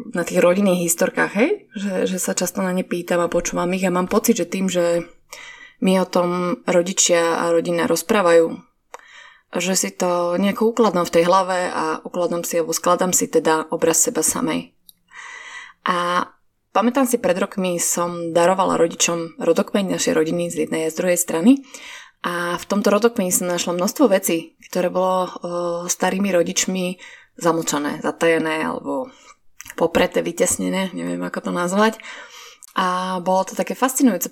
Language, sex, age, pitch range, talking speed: Slovak, female, 20-39, 170-205 Hz, 155 wpm